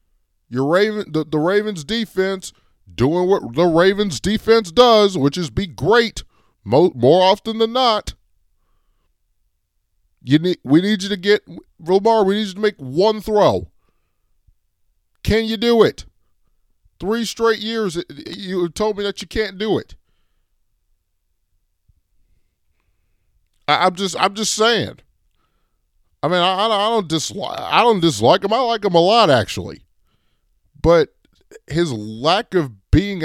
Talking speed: 145 wpm